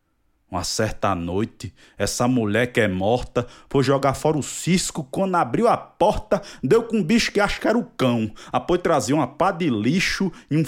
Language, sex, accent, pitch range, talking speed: Portuguese, male, Brazilian, 105-165 Hz, 195 wpm